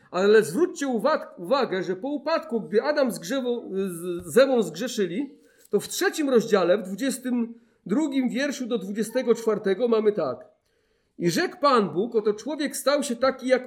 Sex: male